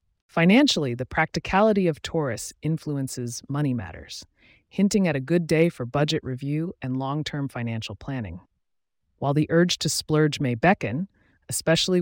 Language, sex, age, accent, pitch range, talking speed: English, female, 30-49, American, 115-160 Hz, 140 wpm